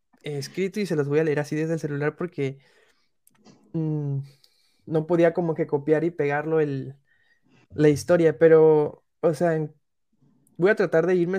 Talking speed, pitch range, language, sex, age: 155 wpm, 145-170 Hz, Spanish, male, 20-39